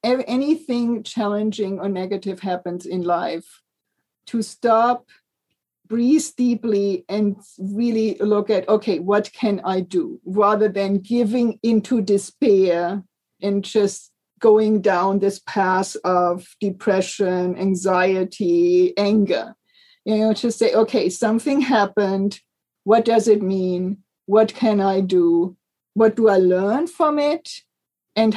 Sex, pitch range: female, 190-230 Hz